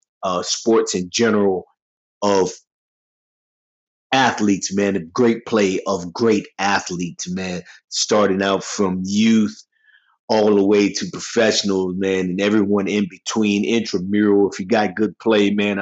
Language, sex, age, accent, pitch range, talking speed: English, male, 30-49, American, 90-105 Hz, 135 wpm